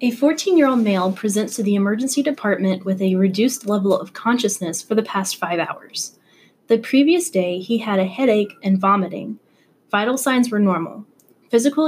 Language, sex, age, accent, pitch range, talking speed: English, female, 20-39, American, 190-255 Hz, 165 wpm